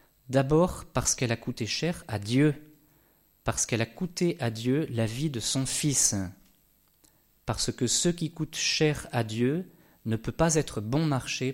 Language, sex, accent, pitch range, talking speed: French, male, French, 120-160 Hz, 170 wpm